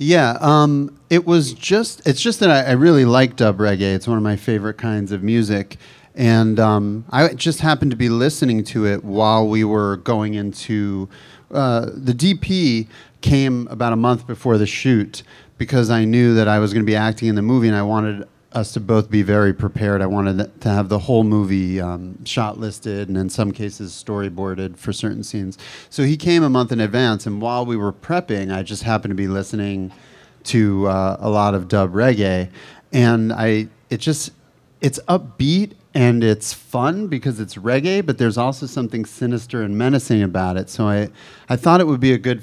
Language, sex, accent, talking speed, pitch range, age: English, male, American, 200 wpm, 105-125 Hz, 30-49